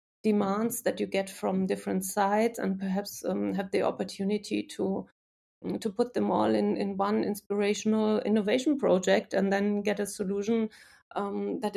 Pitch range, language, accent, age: 180-210 Hz, English, German, 30-49